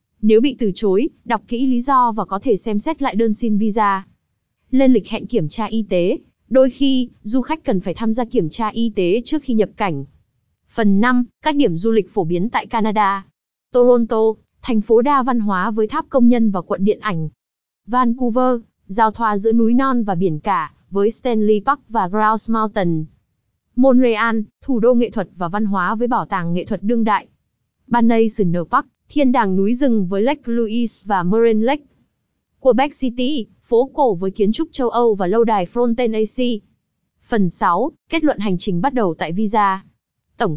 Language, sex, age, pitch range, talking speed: Vietnamese, female, 20-39, 195-250 Hz, 195 wpm